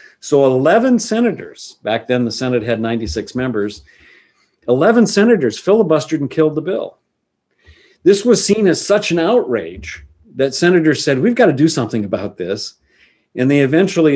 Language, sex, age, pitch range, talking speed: English, male, 50-69, 115-155 Hz, 155 wpm